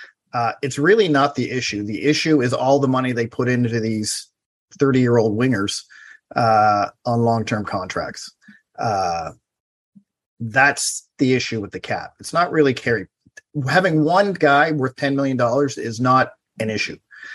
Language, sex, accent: English, male, American